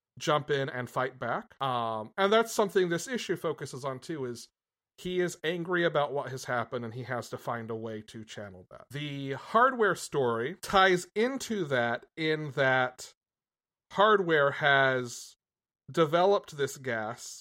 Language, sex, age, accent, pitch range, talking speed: English, male, 40-59, American, 120-160 Hz, 155 wpm